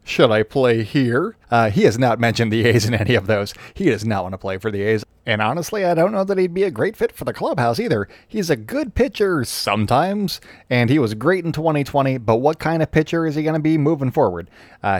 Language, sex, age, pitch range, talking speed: English, male, 30-49, 110-155 Hz, 250 wpm